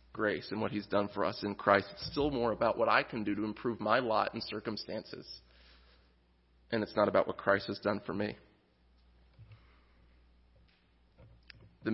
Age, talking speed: 30-49, 170 wpm